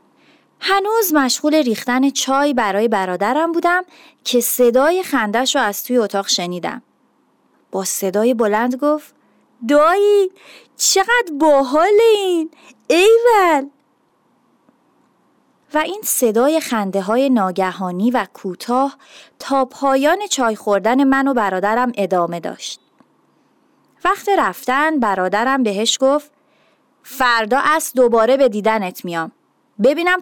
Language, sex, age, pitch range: Persian, female, 30-49, 215-300 Hz